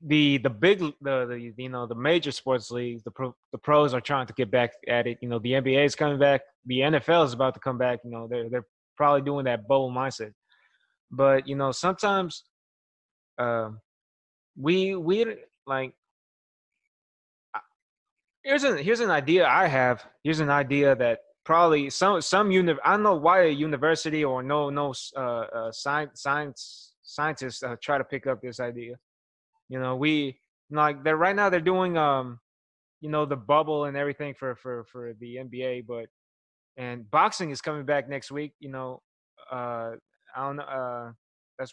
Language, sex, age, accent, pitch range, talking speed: English, male, 20-39, American, 120-150 Hz, 180 wpm